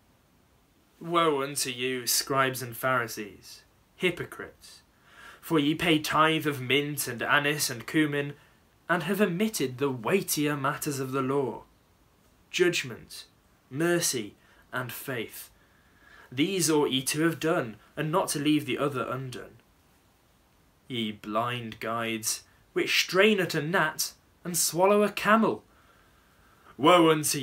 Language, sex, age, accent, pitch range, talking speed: English, male, 20-39, British, 120-170 Hz, 125 wpm